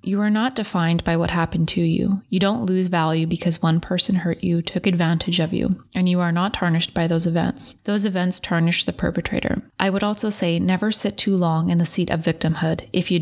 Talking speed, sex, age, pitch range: 225 wpm, female, 20-39, 170-190 Hz